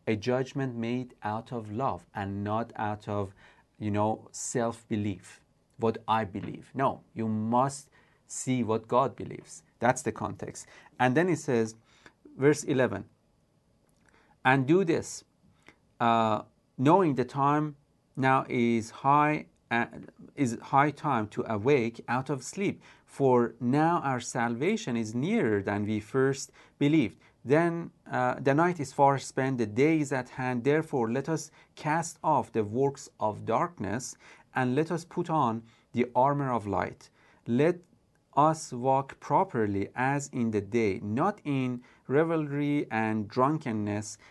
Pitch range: 110-145 Hz